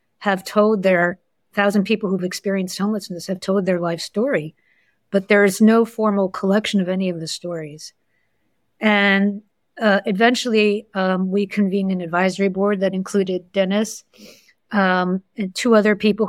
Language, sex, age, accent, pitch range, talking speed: English, female, 50-69, American, 180-200 Hz, 150 wpm